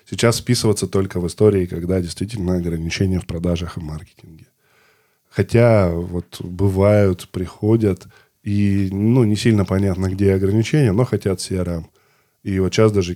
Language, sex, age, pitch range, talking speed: Russian, male, 10-29, 90-110 Hz, 135 wpm